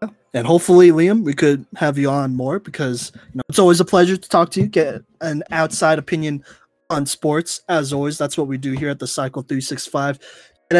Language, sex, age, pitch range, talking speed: English, male, 20-39, 140-170 Hz, 210 wpm